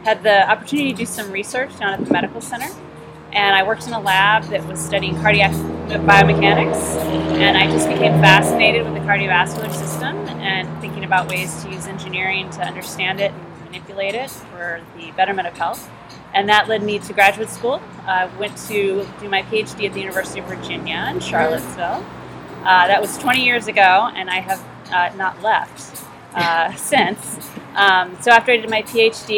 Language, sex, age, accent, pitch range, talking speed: English, female, 30-49, American, 170-200 Hz, 185 wpm